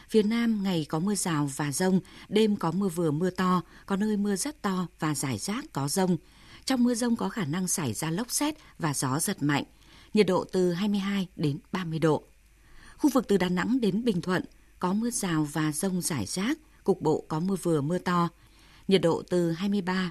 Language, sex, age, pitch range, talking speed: Vietnamese, female, 20-39, 165-210 Hz, 210 wpm